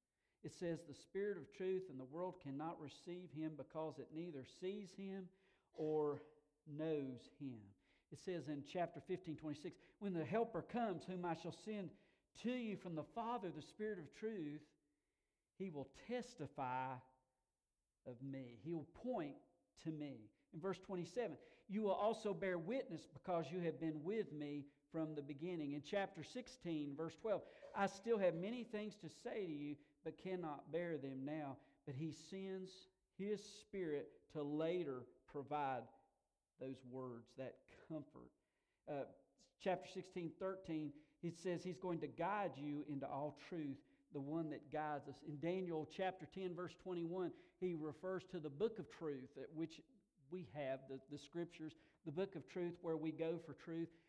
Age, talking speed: 50-69, 165 wpm